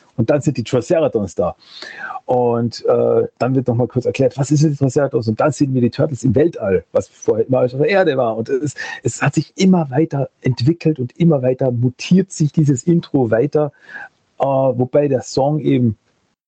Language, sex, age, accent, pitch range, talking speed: German, male, 40-59, German, 125-165 Hz, 195 wpm